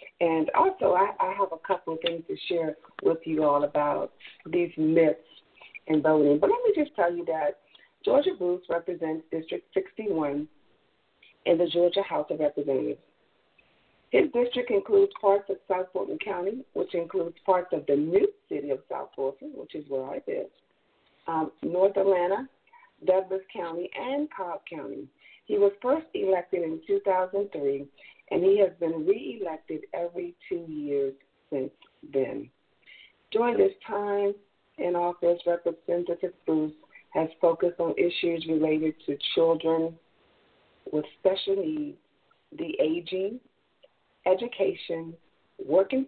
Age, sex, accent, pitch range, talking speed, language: 50-69, female, American, 160-240 Hz, 135 wpm, English